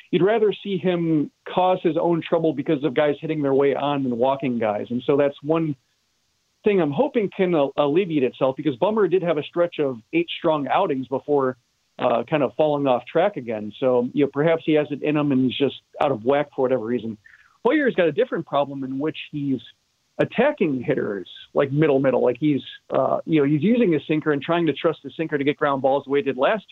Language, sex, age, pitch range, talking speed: English, male, 40-59, 130-165 Hz, 230 wpm